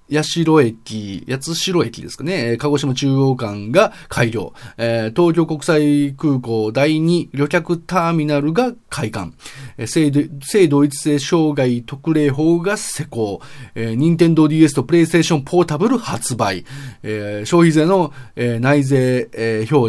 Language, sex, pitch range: Japanese, male, 115-170 Hz